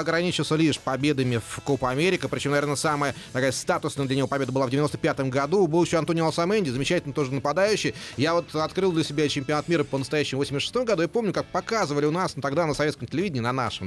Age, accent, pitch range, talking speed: 30-49, native, 135-180 Hz, 220 wpm